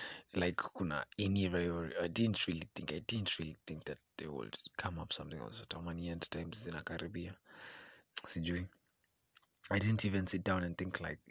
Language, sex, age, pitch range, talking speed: English, male, 30-49, 85-100 Hz, 160 wpm